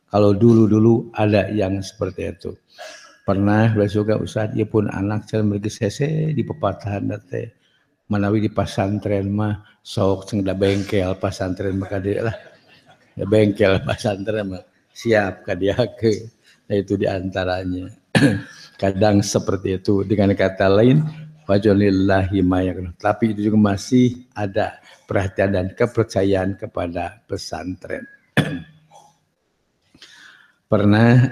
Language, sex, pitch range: English, male, 95-110 Hz